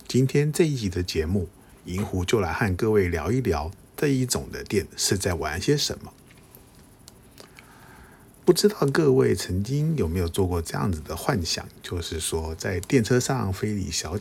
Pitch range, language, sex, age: 90-125 Hz, Chinese, male, 50-69